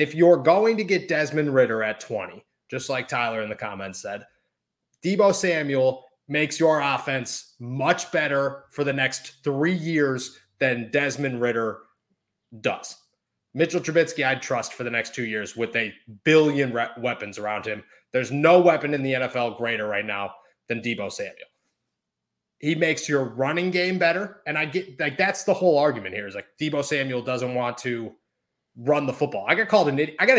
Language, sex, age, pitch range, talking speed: English, male, 30-49, 130-180 Hz, 180 wpm